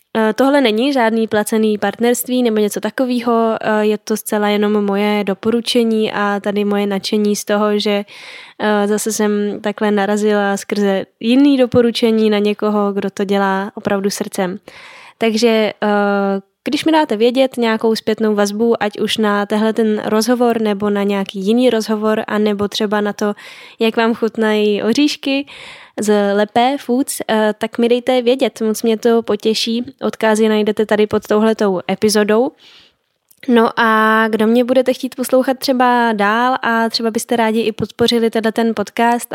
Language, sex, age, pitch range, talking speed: Czech, female, 10-29, 210-235 Hz, 150 wpm